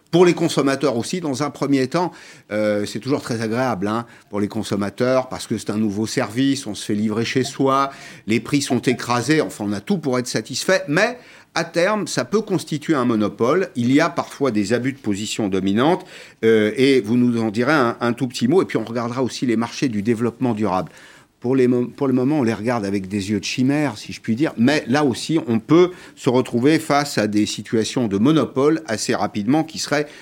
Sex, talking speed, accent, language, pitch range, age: male, 220 wpm, French, French, 105-145 Hz, 50-69